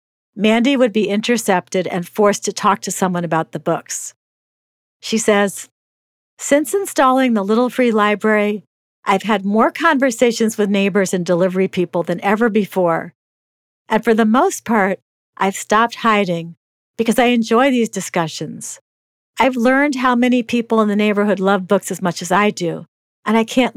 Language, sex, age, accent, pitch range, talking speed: English, female, 50-69, American, 185-235 Hz, 160 wpm